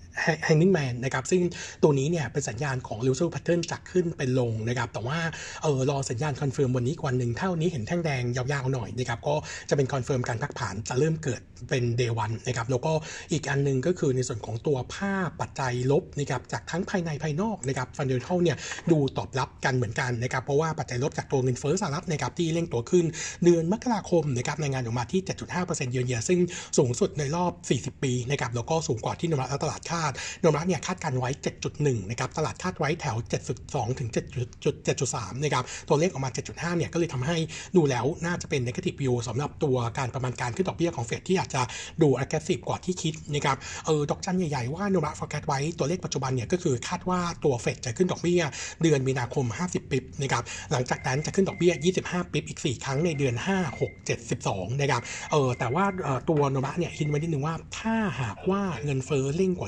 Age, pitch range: 60-79, 130-170 Hz